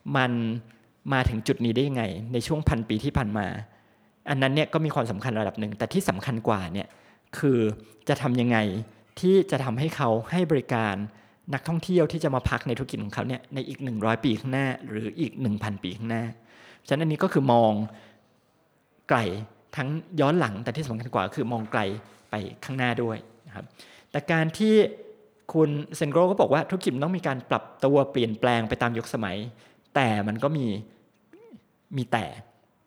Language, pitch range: Thai, 115-150 Hz